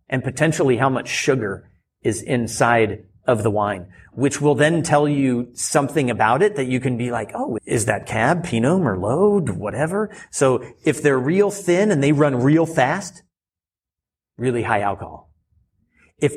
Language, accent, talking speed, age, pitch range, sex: English, American, 160 wpm, 40-59, 110-150 Hz, male